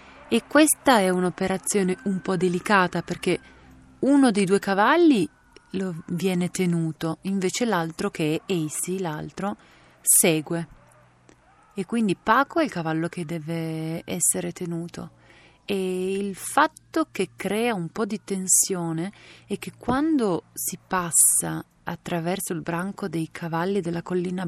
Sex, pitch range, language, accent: female, 170-200 Hz, Italian, native